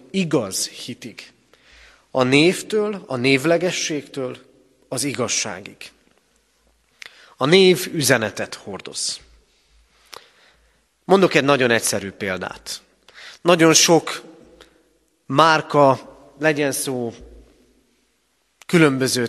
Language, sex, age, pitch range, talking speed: Hungarian, male, 30-49, 130-175 Hz, 70 wpm